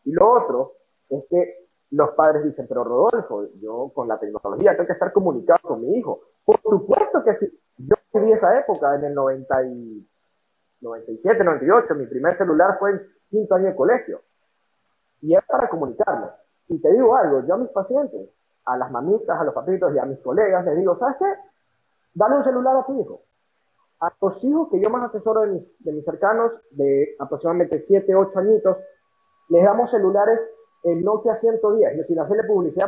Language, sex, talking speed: Spanish, male, 190 wpm